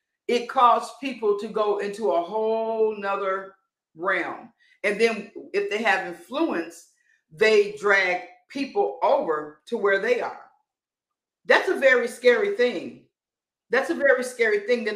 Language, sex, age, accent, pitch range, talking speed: English, female, 50-69, American, 190-250 Hz, 140 wpm